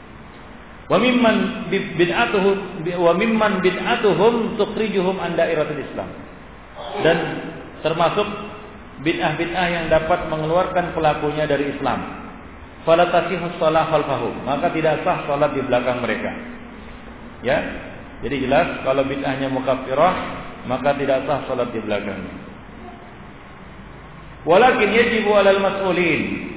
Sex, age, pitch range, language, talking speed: male, 50-69, 135-175 Hz, Malay, 100 wpm